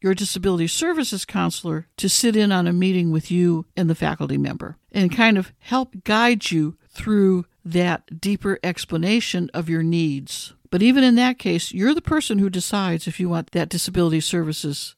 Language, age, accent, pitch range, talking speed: English, 60-79, American, 175-235 Hz, 180 wpm